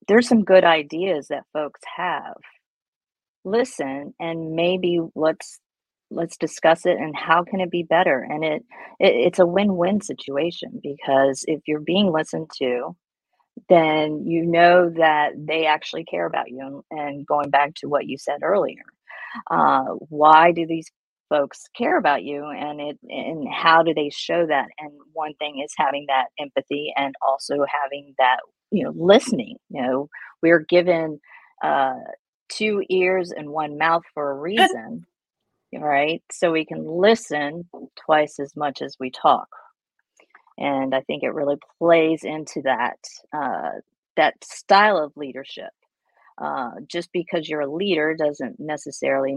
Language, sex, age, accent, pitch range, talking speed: English, female, 40-59, American, 140-170 Hz, 155 wpm